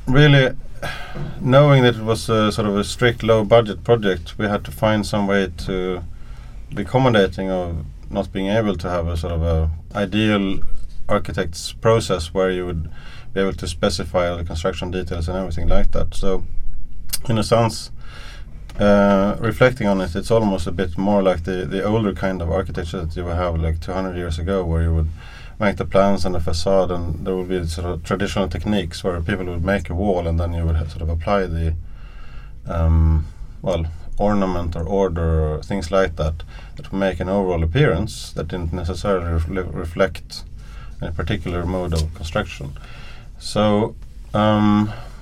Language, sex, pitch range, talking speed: English, male, 85-105 Hz, 180 wpm